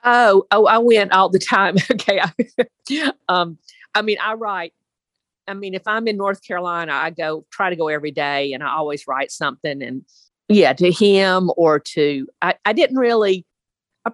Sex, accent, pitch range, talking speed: female, American, 160-200 Hz, 185 wpm